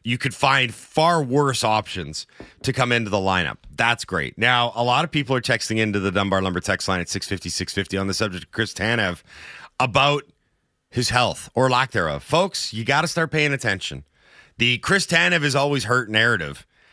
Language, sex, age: English, male, 30-49